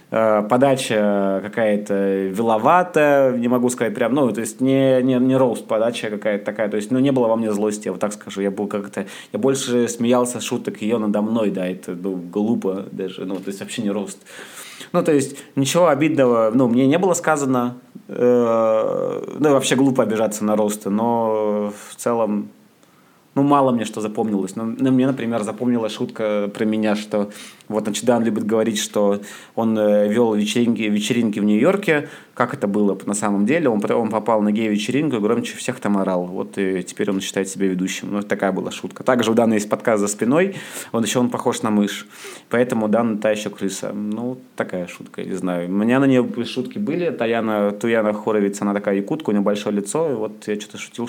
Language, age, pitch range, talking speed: Russian, 20-39, 105-125 Hz, 200 wpm